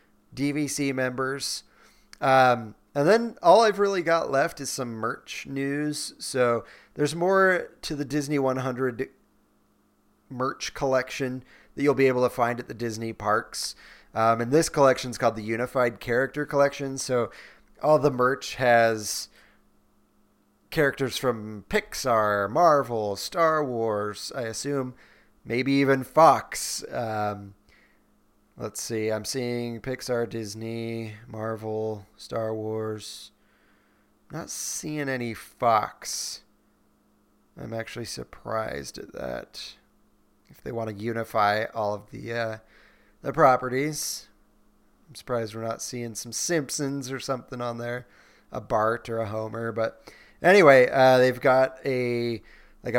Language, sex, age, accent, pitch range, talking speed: English, male, 30-49, American, 110-135 Hz, 125 wpm